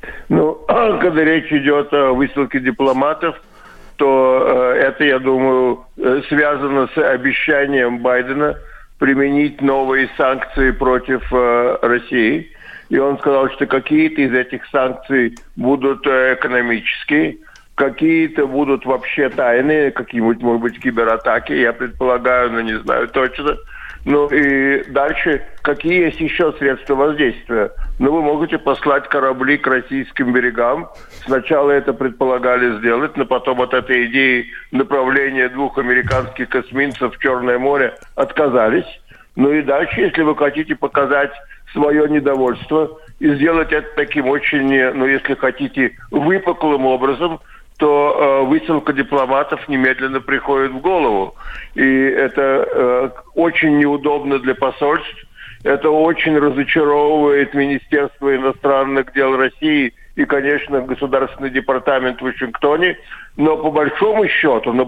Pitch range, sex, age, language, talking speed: 130-145 Hz, male, 50-69, Russian, 115 wpm